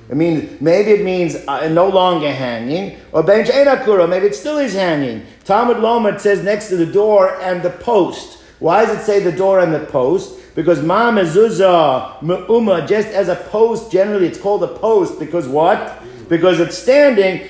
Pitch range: 150-205 Hz